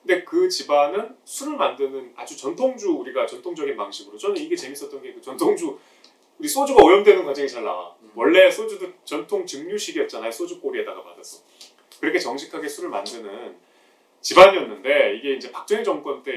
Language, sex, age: Korean, male, 30-49